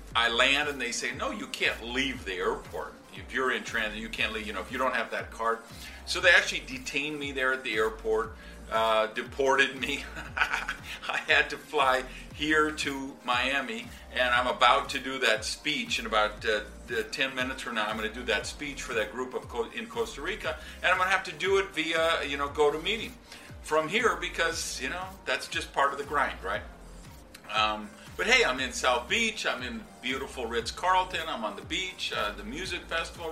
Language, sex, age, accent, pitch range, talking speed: English, male, 50-69, American, 125-180 Hz, 210 wpm